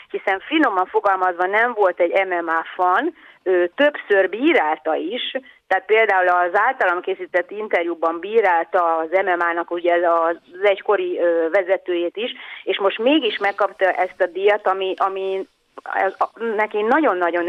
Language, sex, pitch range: Hungarian, female, 170-215 Hz